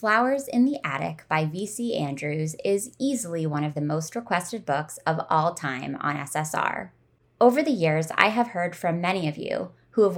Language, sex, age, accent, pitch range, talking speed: English, female, 20-39, American, 160-225 Hz, 190 wpm